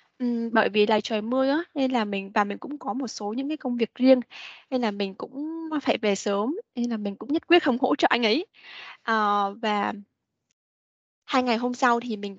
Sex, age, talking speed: female, 10-29, 230 wpm